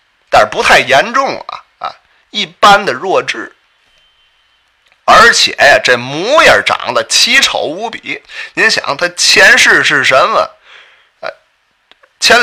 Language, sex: Chinese, male